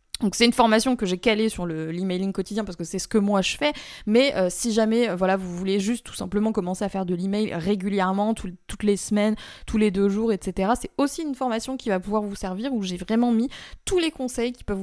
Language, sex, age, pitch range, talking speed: French, female, 20-39, 195-245 Hz, 245 wpm